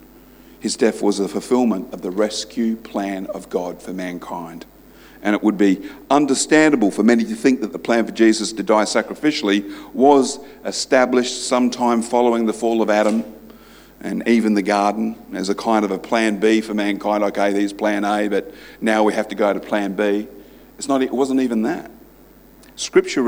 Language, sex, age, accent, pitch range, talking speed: English, male, 50-69, Australian, 100-115 Hz, 185 wpm